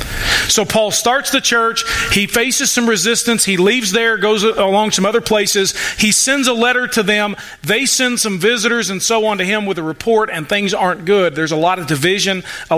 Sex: male